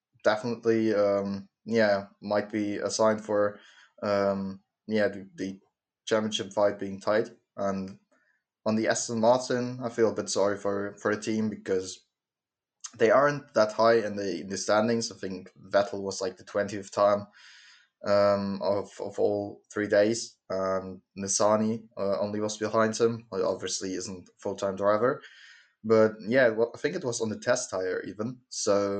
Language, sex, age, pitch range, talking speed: English, male, 20-39, 100-110 Hz, 165 wpm